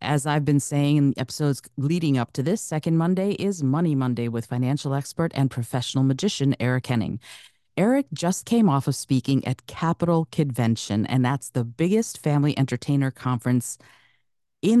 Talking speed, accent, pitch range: 160 wpm, American, 130-180 Hz